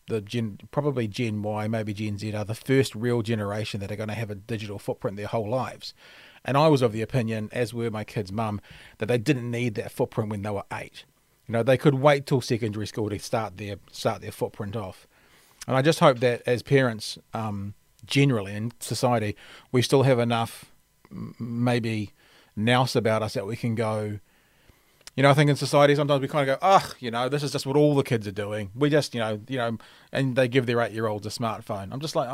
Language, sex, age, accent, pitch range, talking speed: English, male, 30-49, Australian, 110-135 Hz, 230 wpm